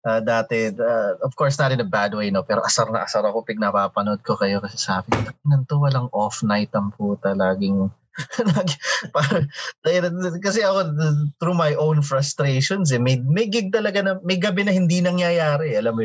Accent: native